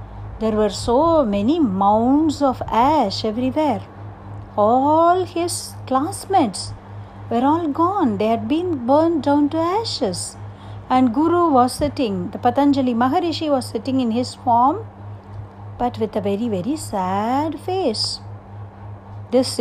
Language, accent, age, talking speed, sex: Tamil, native, 50-69, 125 wpm, female